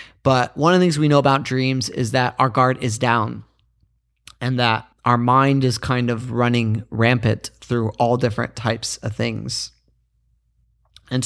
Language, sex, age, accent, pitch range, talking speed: English, male, 30-49, American, 115-140 Hz, 165 wpm